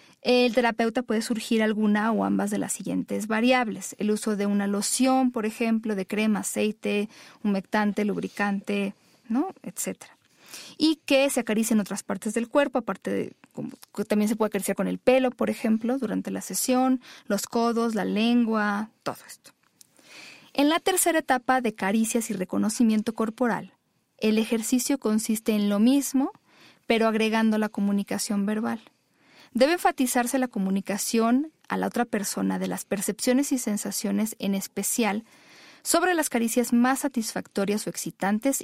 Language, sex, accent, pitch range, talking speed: Spanish, female, Mexican, 210-255 Hz, 150 wpm